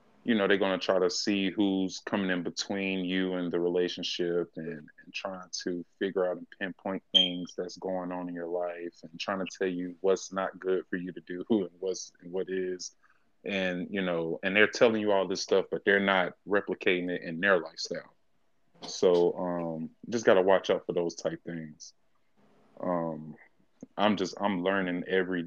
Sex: male